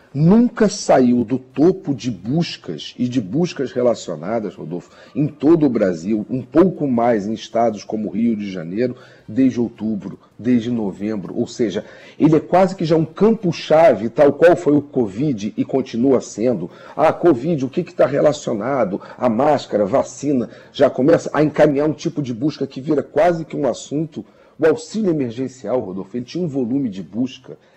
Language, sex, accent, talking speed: Portuguese, male, Brazilian, 175 wpm